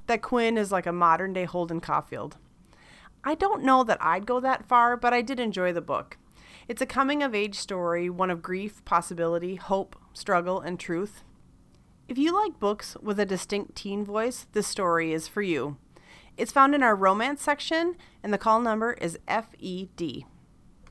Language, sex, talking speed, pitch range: English, female, 170 wpm, 175-250 Hz